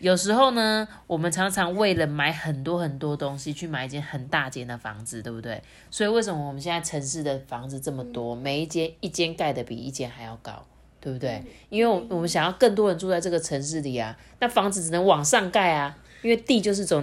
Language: Chinese